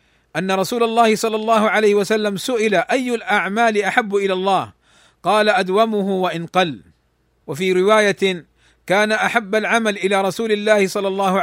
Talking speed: 140 wpm